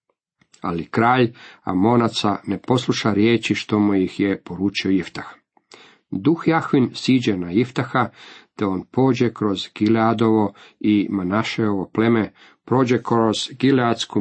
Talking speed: 120 wpm